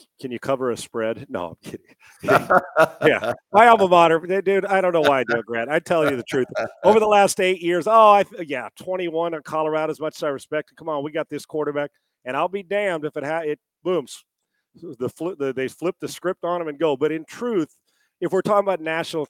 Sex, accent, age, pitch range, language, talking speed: male, American, 40-59, 155-200 Hz, English, 235 wpm